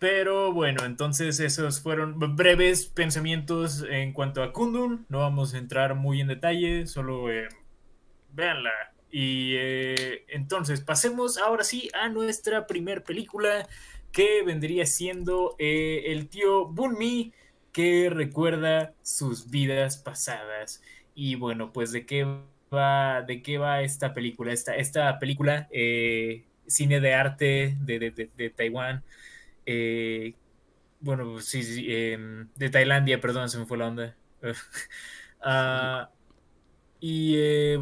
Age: 20-39